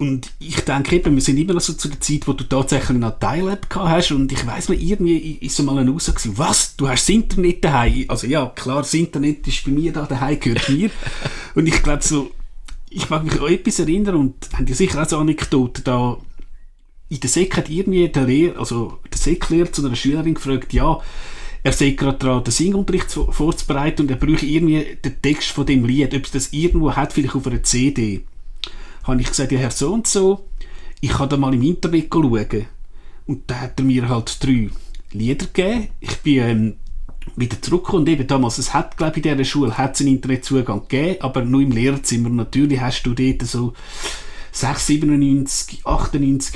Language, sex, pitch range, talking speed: German, male, 130-160 Hz, 205 wpm